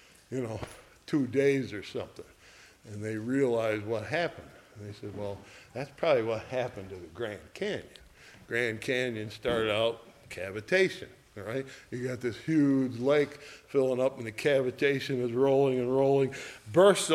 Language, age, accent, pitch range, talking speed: English, 60-79, American, 120-160 Hz, 160 wpm